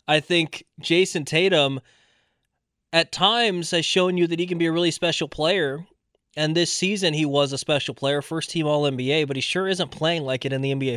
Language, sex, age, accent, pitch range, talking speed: English, male, 20-39, American, 140-165 Hz, 200 wpm